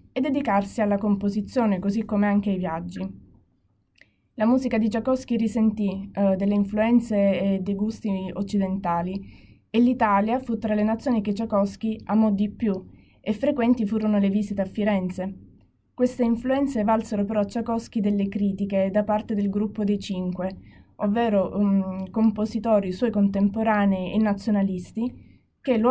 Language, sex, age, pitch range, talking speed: Italian, female, 20-39, 195-235 Hz, 140 wpm